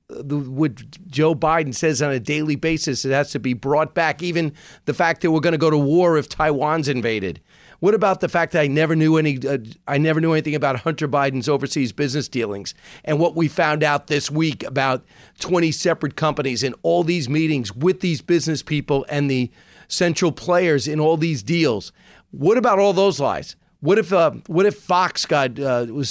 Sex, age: male, 40-59